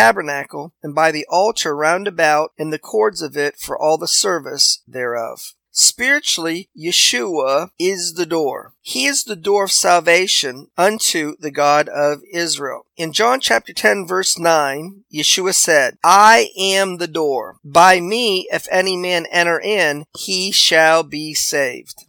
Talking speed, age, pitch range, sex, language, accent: 150 wpm, 40-59, 150-190 Hz, male, English, American